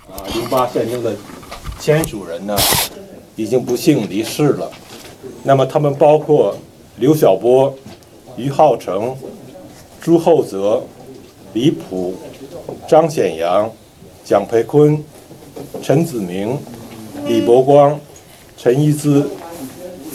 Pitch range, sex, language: 115-150 Hz, male, Chinese